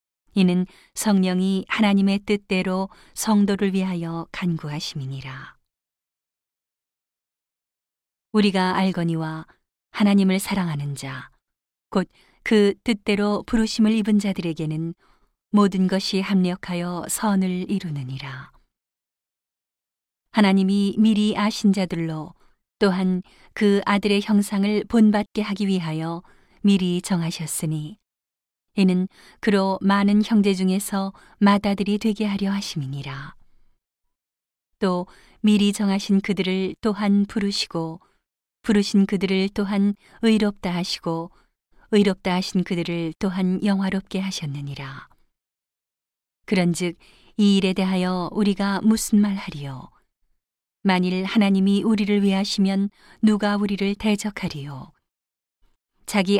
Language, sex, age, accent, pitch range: Korean, female, 40-59, native, 175-205 Hz